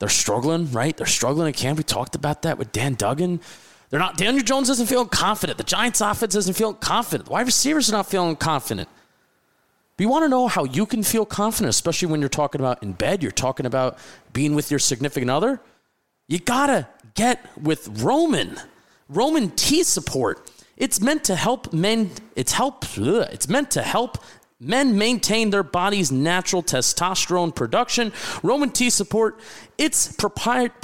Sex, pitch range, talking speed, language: male, 150-215 Hz, 175 wpm, English